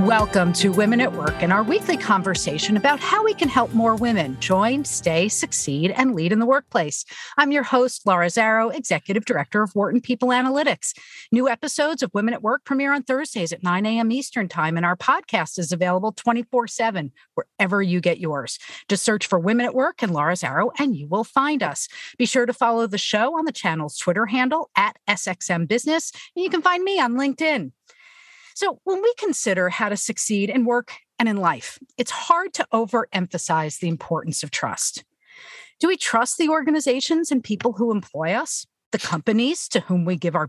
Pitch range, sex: 195-280 Hz, female